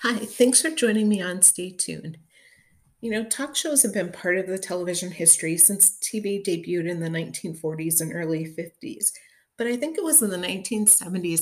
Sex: female